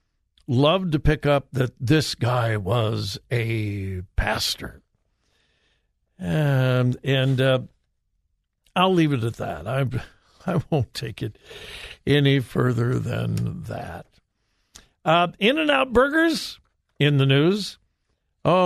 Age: 60-79